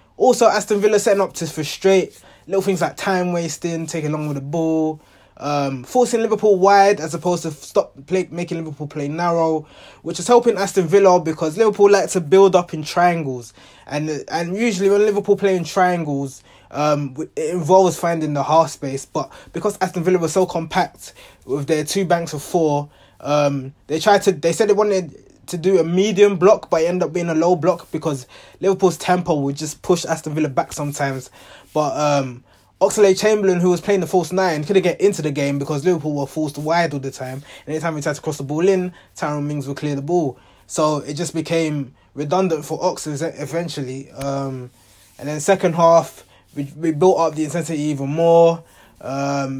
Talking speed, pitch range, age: 195 wpm, 145-185 Hz, 20-39